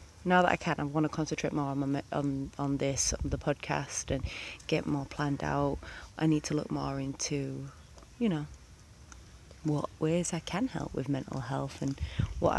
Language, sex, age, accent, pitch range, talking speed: English, female, 30-49, British, 105-160 Hz, 190 wpm